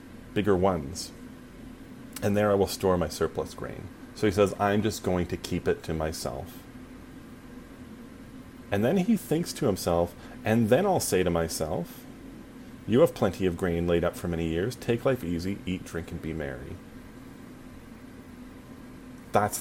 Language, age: English, 30-49